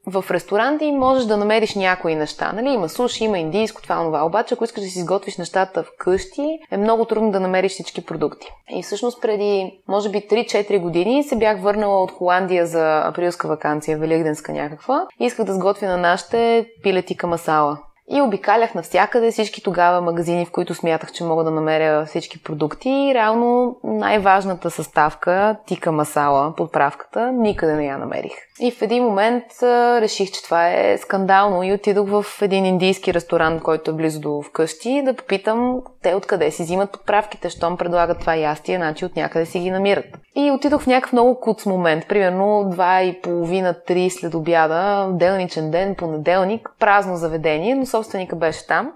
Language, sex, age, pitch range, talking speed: Bulgarian, female, 20-39, 170-220 Hz, 175 wpm